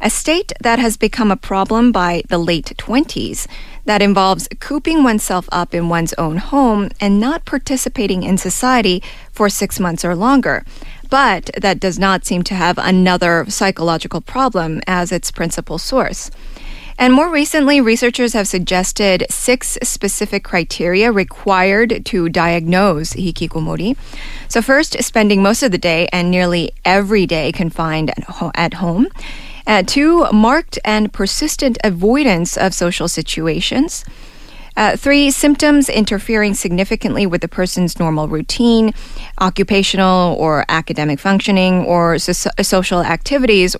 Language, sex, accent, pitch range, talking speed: English, female, American, 175-235 Hz, 135 wpm